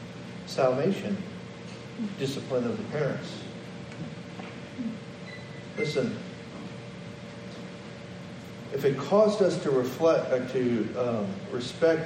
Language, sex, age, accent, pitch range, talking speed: English, male, 50-69, American, 120-180 Hz, 80 wpm